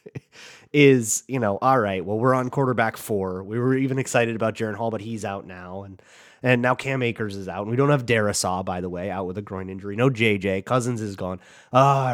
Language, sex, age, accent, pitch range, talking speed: English, male, 30-49, American, 100-125 Hz, 230 wpm